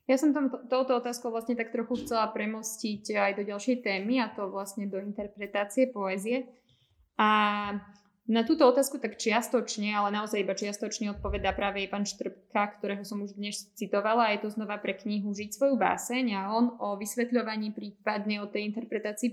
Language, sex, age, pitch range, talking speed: Slovak, female, 20-39, 200-235 Hz, 175 wpm